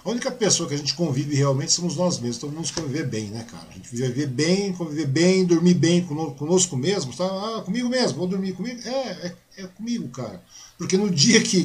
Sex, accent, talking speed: male, Brazilian, 225 wpm